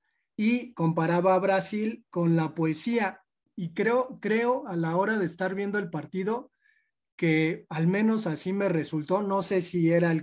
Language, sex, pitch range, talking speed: Spanish, male, 165-210 Hz, 170 wpm